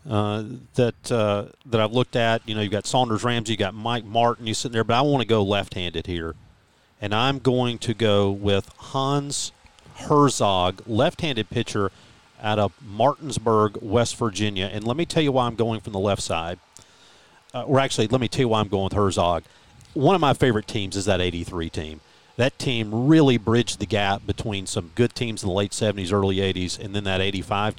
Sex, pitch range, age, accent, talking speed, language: male, 100-130 Hz, 40-59, American, 205 wpm, English